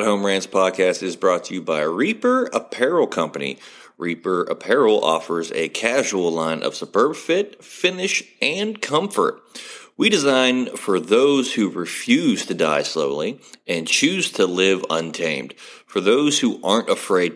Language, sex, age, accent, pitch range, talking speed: English, male, 30-49, American, 95-135 Hz, 145 wpm